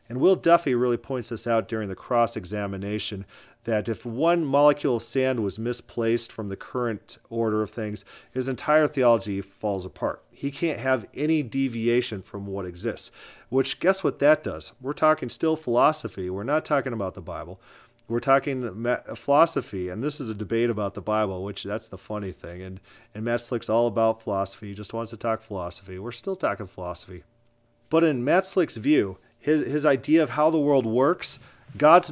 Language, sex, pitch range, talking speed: English, male, 105-135 Hz, 185 wpm